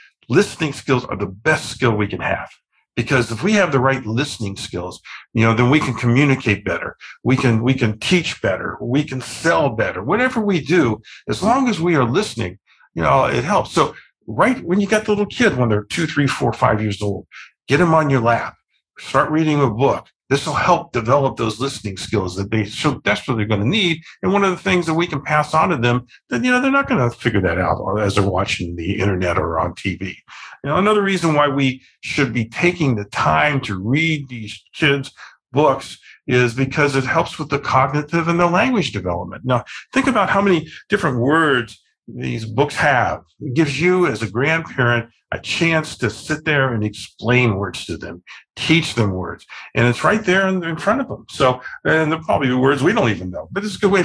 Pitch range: 115-160 Hz